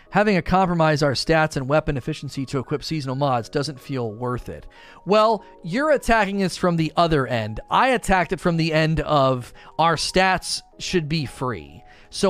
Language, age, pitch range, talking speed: English, 30-49, 125-175 Hz, 180 wpm